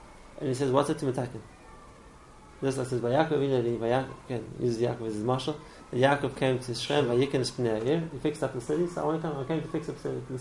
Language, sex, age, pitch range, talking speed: English, male, 30-49, 120-145 Hz, 220 wpm